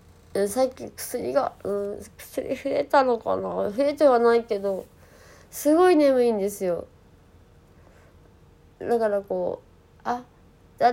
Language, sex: Japanese, female